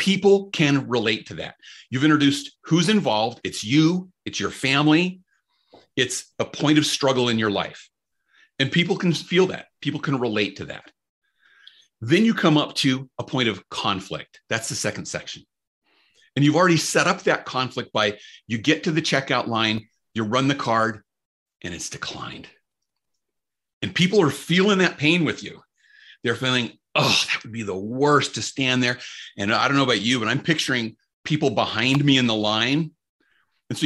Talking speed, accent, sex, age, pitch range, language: 180 wpm, American, male, 40-59, 120-160 Hz, English